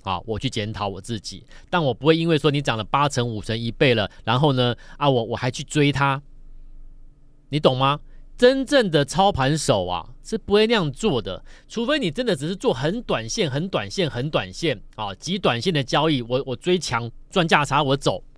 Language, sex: Chinese, male